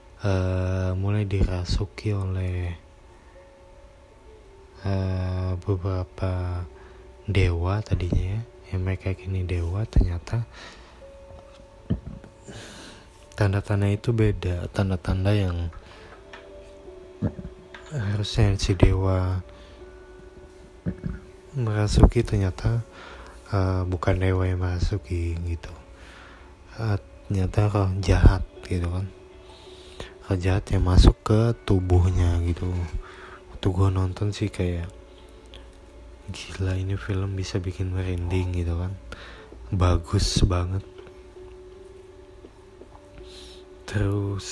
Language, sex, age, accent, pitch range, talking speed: Indonesian, male, 20-39, native, 90-100 Hz, 75 wpm